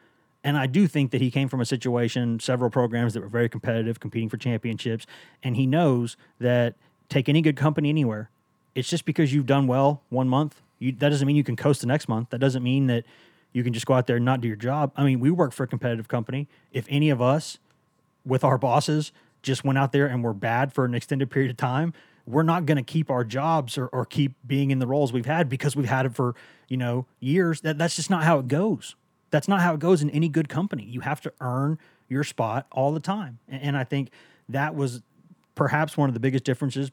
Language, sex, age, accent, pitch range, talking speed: English, male, 30-49, American, 125-145 Hz, 245 wpm